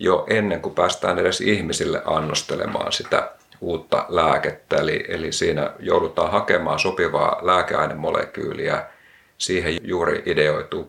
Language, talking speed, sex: Finnish, 110 wpm, male